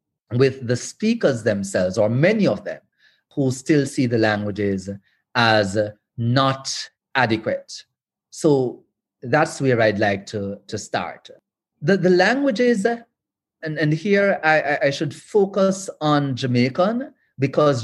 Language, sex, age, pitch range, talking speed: English, male, 40-59, 115-155 Hz, 125 wpm